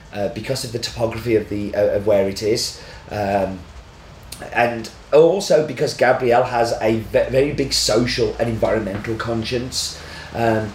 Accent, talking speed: British, 150 wpm